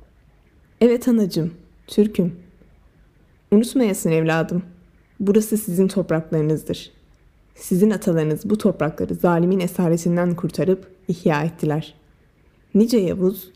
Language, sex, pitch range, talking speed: Turkish, female, 155-190 Hz, 85 wpm